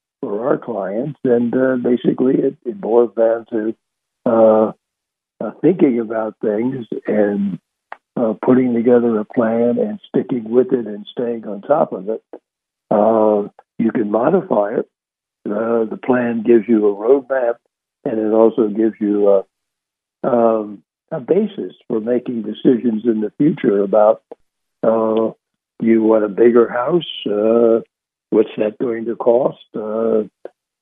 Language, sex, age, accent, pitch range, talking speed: English, male, 60-79, American, 110-125 Hz, 145 wpm